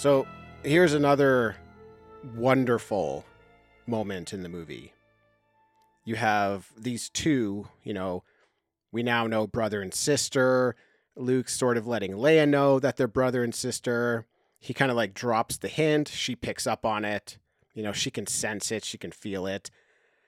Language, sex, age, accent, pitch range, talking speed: English, male, 40-59, American, 110-135 Hz, 155 wpm